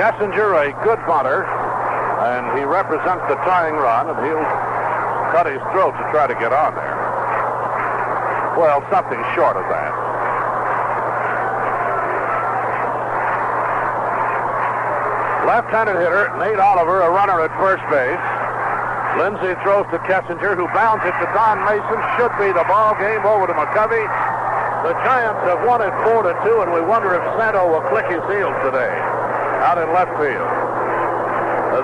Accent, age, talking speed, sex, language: American, 60-79, 140 wpm, male, English